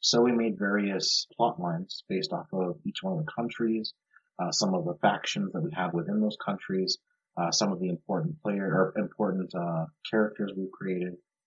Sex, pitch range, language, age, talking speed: male, 105-165 Hz, English, 30-49, 195 wpm